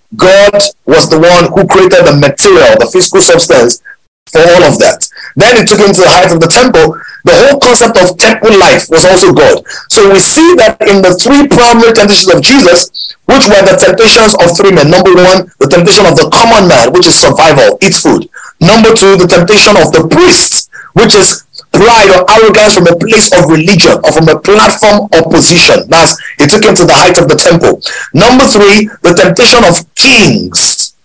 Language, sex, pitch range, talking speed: English, male, 180-230 Hz, 200 wpm